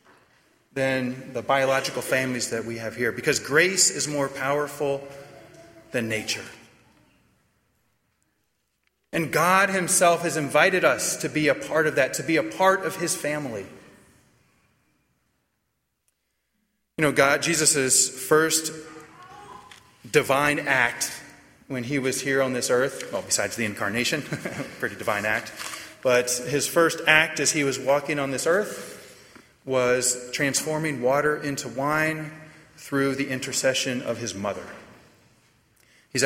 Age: 30-49